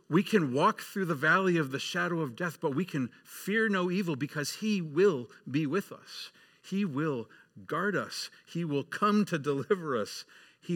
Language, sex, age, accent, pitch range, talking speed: English, male, 50-69, American, 105-155 Hz, 190 wpm